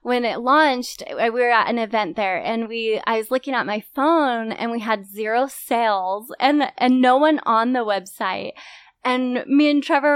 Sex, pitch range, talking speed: female, 215-270 Hz, 195 wpm